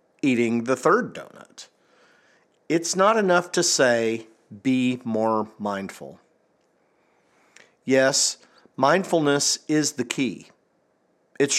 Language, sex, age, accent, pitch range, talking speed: English, male, 50-69, American, 130-170 Hz, 95 wpm